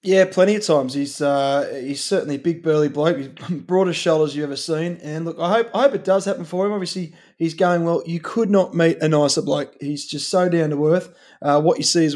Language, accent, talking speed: English, Australian, 255 wpm